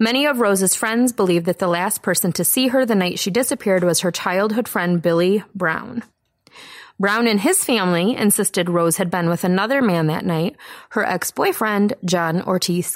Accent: American